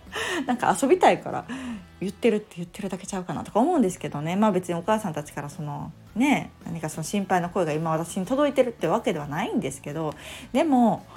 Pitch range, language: 165-225 Hz, Japanese